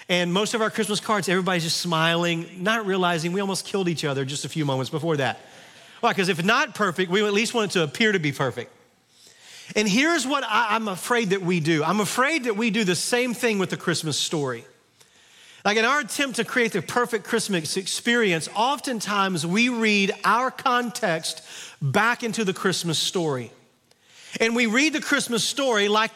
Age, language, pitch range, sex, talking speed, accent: 40-59, English, 175-235 Hz, male, 195 wpm, American